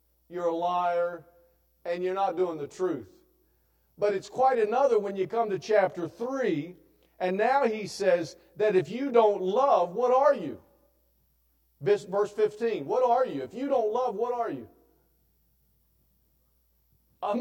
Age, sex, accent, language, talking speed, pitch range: 50-69, male, American, English, 150 wpm, 170-250 Hz